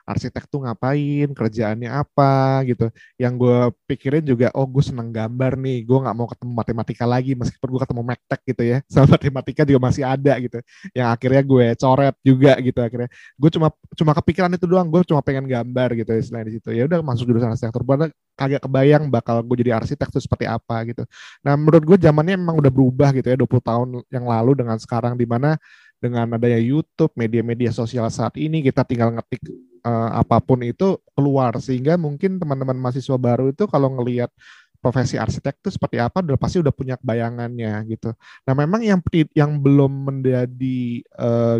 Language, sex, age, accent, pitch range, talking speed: Indonesian, male, 20-39, native, 120-140 Hz, 180 wpm